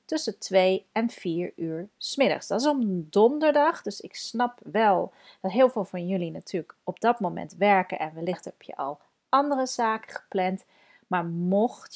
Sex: female